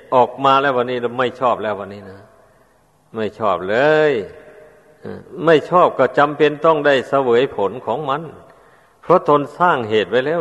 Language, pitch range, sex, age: Thai, 120-150 Hz, male, 60-79